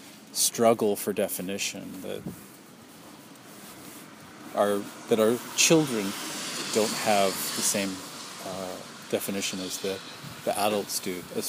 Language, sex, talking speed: English, male, 105 wpm